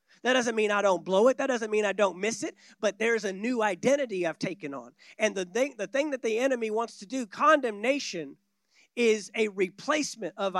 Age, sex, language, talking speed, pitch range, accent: 40-59, male, English, 210 wpm, 205-260 Hz, American